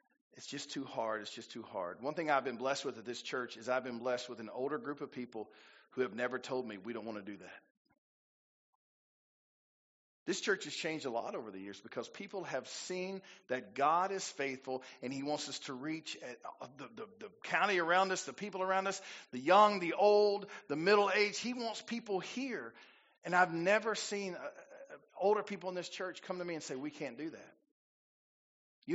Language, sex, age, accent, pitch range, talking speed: English, male, 40-59, American, 135-195 Hz, 215 wpm